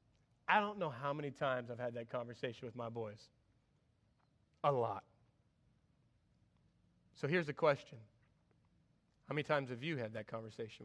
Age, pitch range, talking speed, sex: 30-49, 120-150 Hz, 150 wpm, male